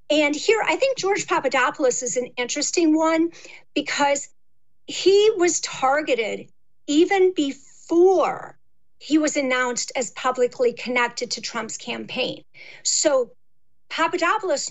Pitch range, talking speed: 260-345 Hz, 110 wpm